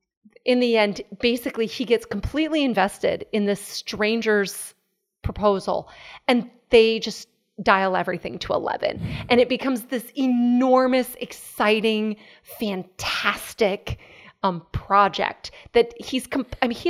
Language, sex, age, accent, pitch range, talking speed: English, female, 30-49, American, 200-250 Hz, 120 wpm